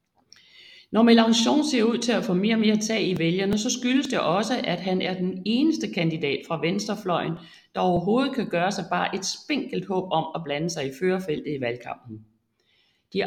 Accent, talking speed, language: native, 195 wpm, Danish